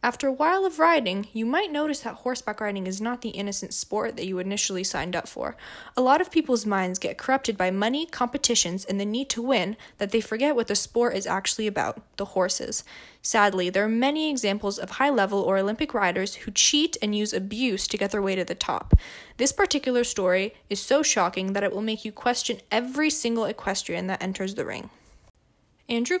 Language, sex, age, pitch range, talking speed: English, female, 10-29, 195-250 Hz, 205 wpm